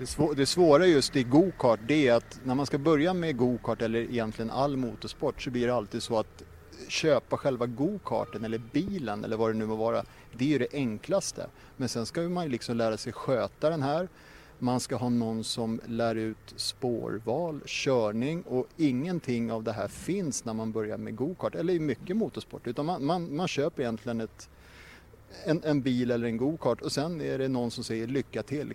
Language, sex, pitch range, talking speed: Swedish, male, 115-140 Hz, 200 wpm